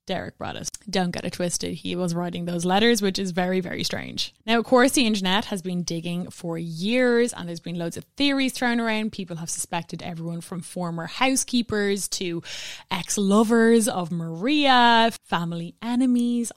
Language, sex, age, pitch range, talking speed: English, female, 20-39, 175-240 Hz, 175 wpm